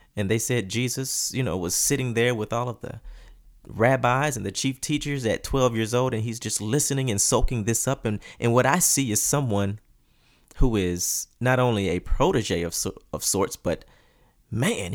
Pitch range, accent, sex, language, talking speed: 95-120 Hz, American, male, English, 195 wpm